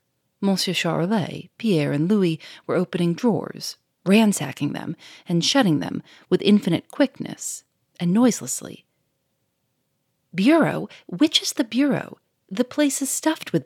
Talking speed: 125 wpm